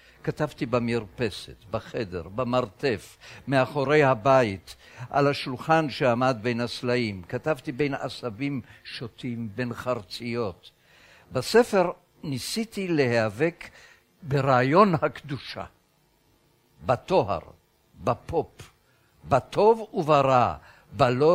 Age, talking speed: 60-79, 75 wpm